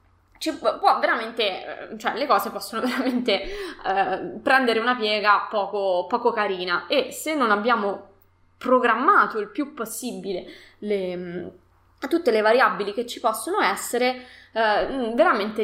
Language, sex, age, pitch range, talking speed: Italian, female, 20-39, 195-245 Hz, 125 wpm